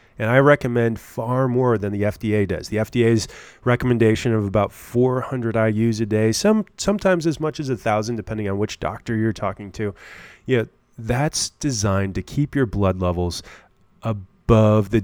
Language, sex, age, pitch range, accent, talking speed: English, male, 30-49, 100-125 Hz, American, 170 wpm